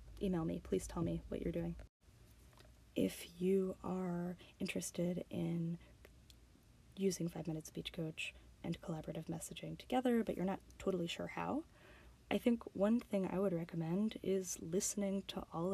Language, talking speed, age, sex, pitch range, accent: English, 150 wpm, 10-29, female, 165-200 Hz, American